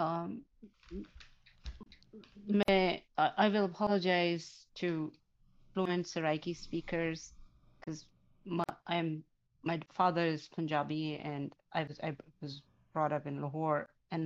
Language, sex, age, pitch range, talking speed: English, female, 30-49, 145-200 Hz, 110 wpm